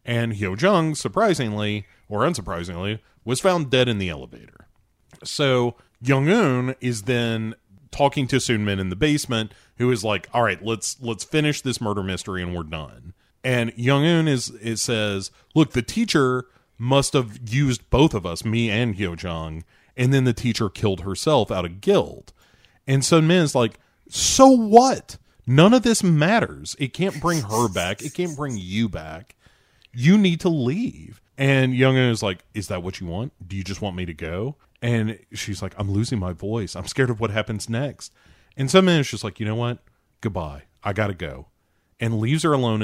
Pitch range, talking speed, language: 95-130 Hz, 195 wpm, English